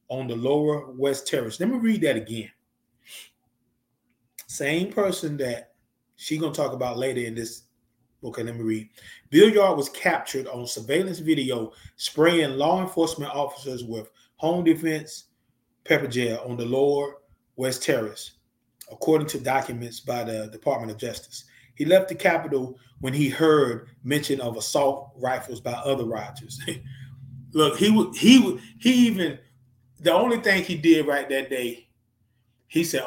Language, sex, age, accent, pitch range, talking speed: English, male, 30-49, American, 120-160 Hz, 155 wpm